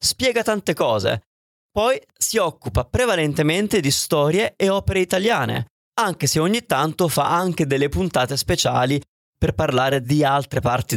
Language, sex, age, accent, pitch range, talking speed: Italian, male, 30-49, native, 130-195 Hz, 140 wpm